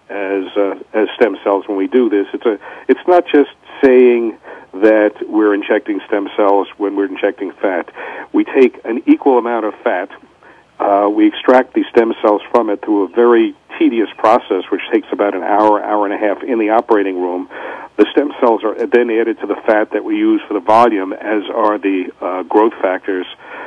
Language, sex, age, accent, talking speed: English, male, 50-69, American, 200 wpm